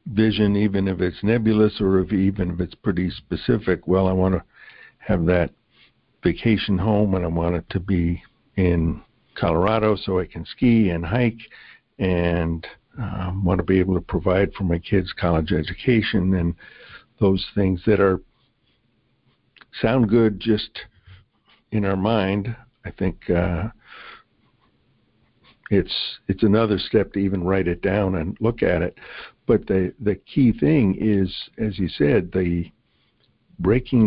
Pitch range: 90-105 Hz